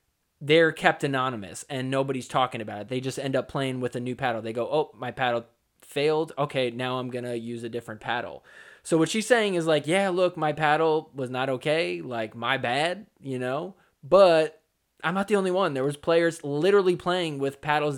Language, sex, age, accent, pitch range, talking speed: English, male, 20-39, American, 135-175 Hz, 210 wpm